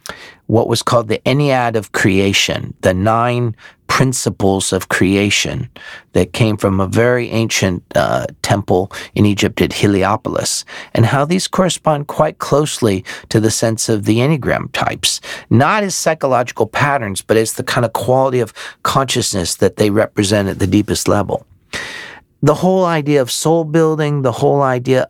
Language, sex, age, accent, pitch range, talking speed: English, male, 50-69, American, 105-130 Hz, 155 wpm